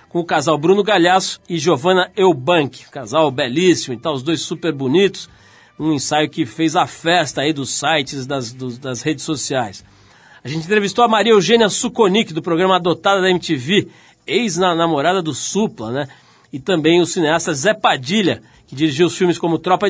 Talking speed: 170 wpm